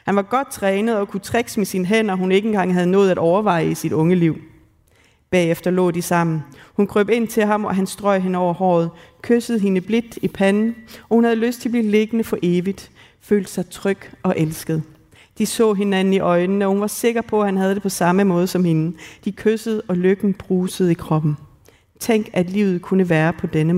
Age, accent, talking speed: 40-59, native, 225 wpm